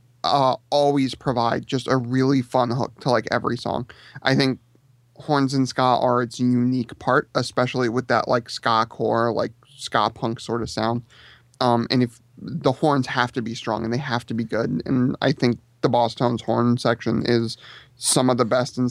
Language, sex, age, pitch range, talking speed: English, male, 30-49, 120-130 Hz, 195 wpm